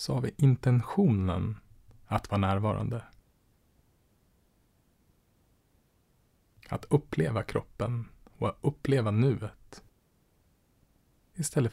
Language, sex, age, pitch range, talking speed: Swedish, male, 30-49, 95-115 Hz, 75 wpm